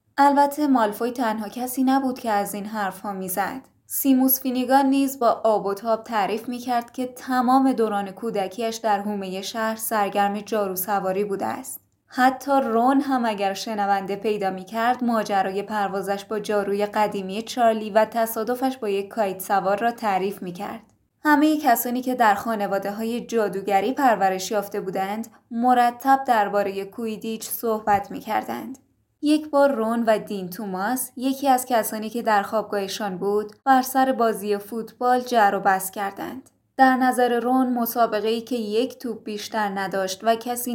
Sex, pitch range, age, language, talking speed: female, 205-250 Hz, 10-29, Persian, 160 wpm